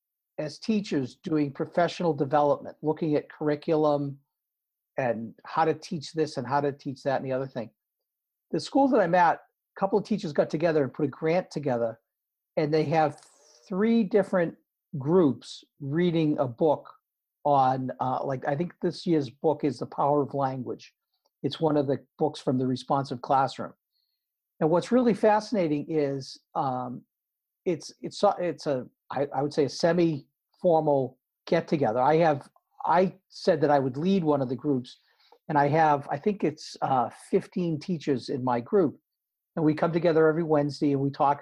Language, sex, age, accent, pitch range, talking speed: English, male, 50-69, American, 140-180 Hz, 175 wpm